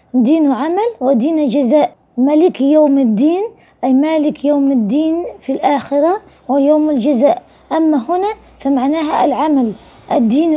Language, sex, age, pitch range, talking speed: Arabic, female, 20-39, 265-330 Hz, 115 wpm